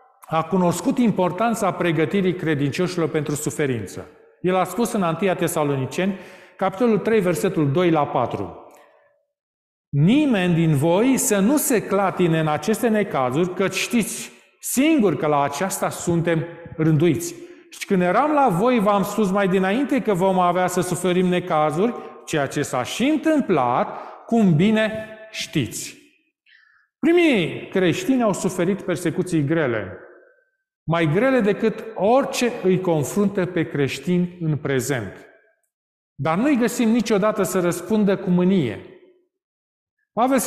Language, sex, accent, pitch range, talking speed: Romanian, male, native, 165-225 Hz, 130 wpm